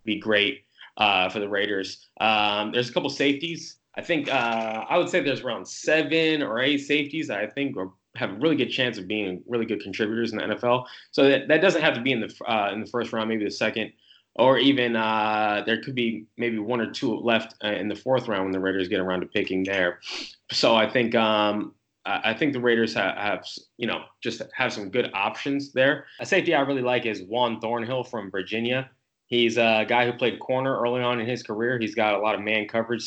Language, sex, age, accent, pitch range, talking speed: English, male, 20-39, American, 100-120 Hz, 230 wpm